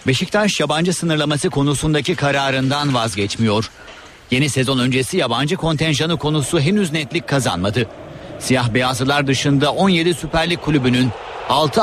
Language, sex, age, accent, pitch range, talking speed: Turkish, male, 50-69, native, 130-170 Hz, 110 wpm